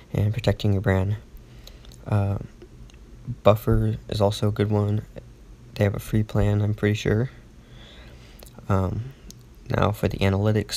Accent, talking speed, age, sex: American, 135 wpm, 20-39, male